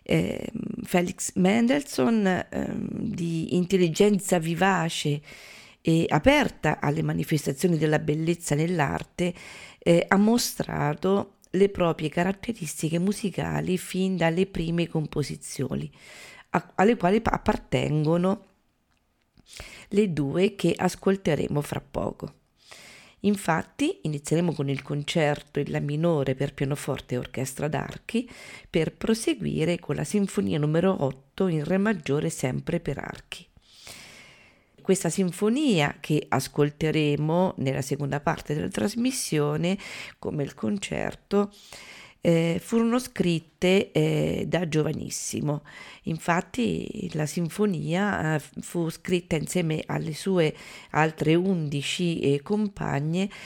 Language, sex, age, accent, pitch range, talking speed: Italian, female, 40-59, native, 150-195 Hz, 100 wpm